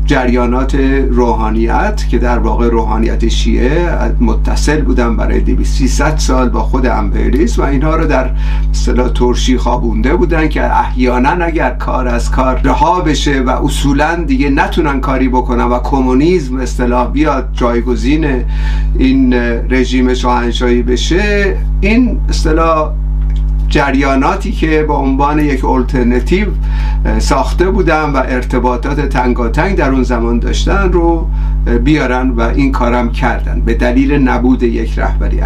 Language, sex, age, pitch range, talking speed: Persian, male, 50-69, 120-155 Hz, 130 wpm